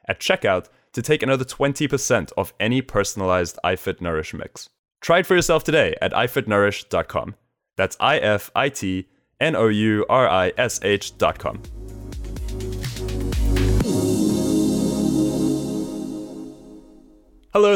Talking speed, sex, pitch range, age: 80 wpm, male, 100-140 Hz, 20-39